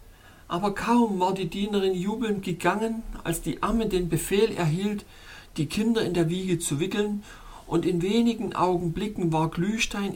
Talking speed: 155 wpm